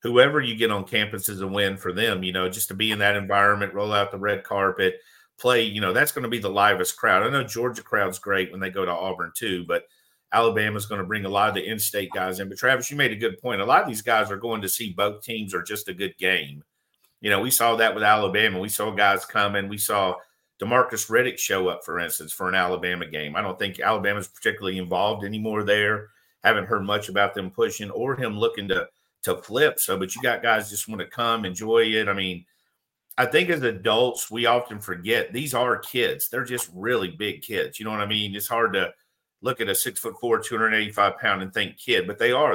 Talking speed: 245 wpm